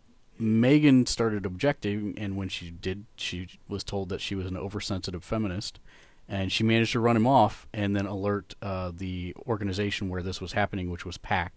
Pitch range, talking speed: 95-110 Hz, 185 wpm